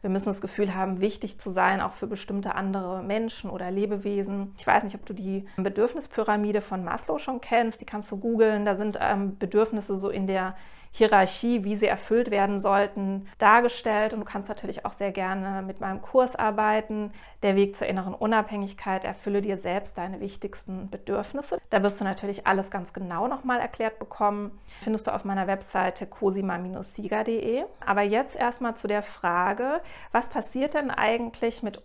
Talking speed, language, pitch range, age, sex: 175 wpm, German, 195-220 Hz, 30-49, female